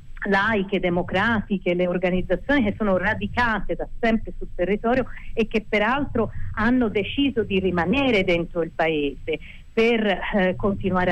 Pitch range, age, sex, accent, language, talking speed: 175-215 Hz, 40-59, female, native, Italian, 130 wpm